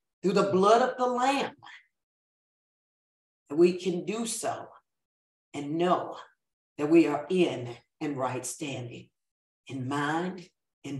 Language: English